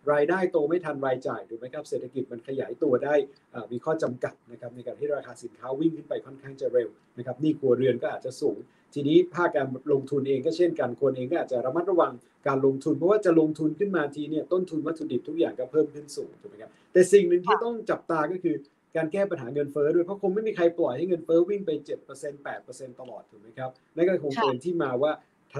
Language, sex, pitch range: Thai, male, 140-185 Hz